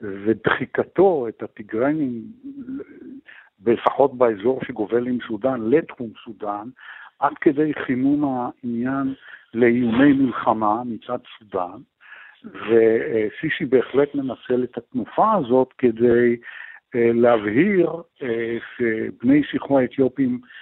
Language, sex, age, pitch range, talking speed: Hebrew, male, 60-79, 115-150 Hz, 85 wpm